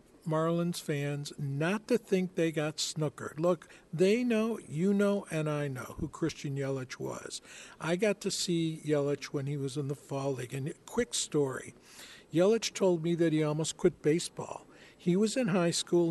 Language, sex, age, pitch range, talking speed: English, male, 60-79, 150-190 Hz, 180 wpm